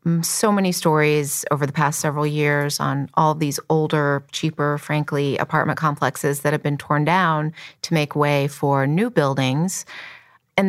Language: English